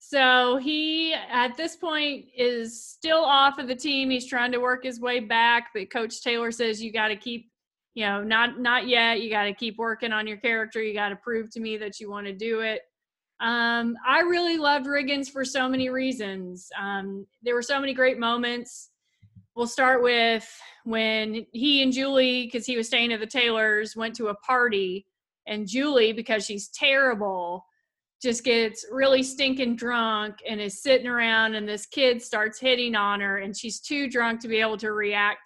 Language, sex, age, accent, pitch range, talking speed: English, female, 30-49, American, 215-255 Hz, 195 wpm